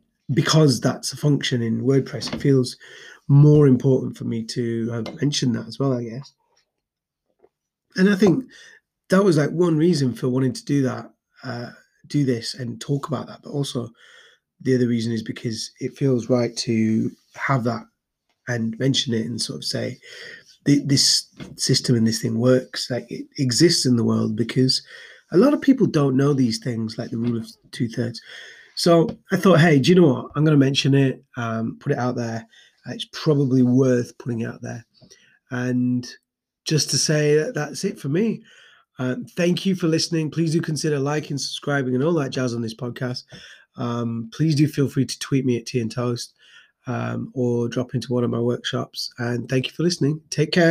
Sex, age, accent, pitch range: male, 30-49, British, 120-155 Hz